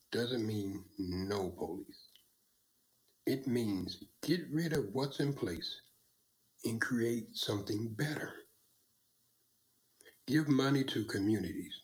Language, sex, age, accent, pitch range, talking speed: English, male, 60-79, American, 105-150 Hz, 100 wpm